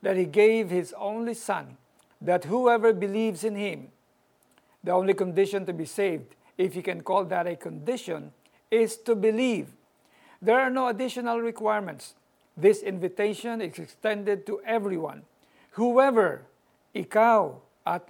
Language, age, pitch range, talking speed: Filipino, 50-69, 185-220 Hz, 135 wpm